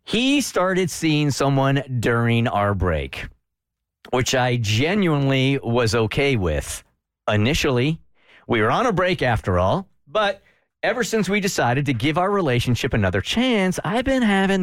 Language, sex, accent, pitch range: English, male, American, 115-180 Hz